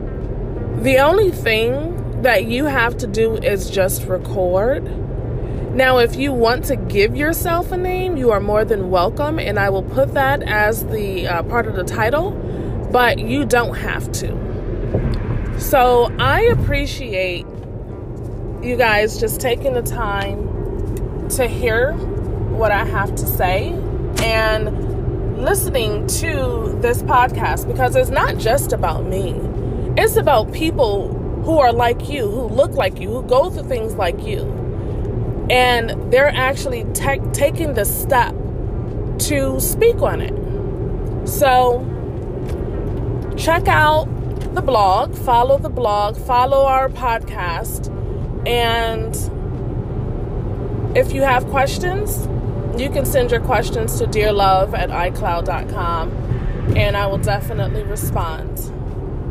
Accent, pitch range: American, 110-160 Hz